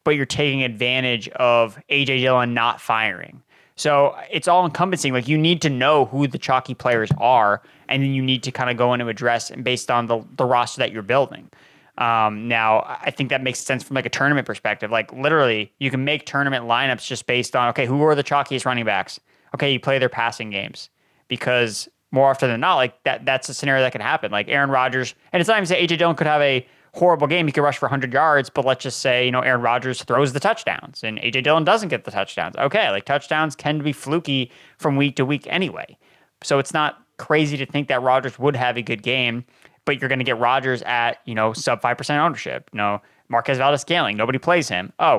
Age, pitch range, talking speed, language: 20-39, 125-145 Hz, 235 wpm, English